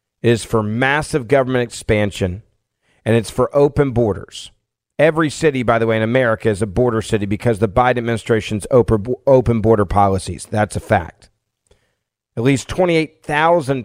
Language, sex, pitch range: English, male, 110-140 Hz